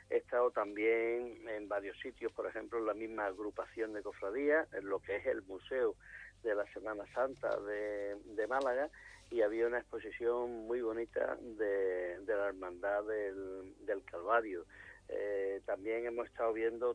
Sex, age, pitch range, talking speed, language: male, 50-69, 105-150 Hz, 160 wpm, Spanish